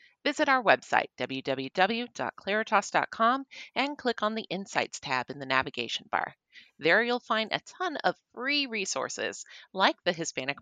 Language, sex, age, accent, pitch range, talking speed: English, female, 30-49, American, 155-235 Hz, 140 wpm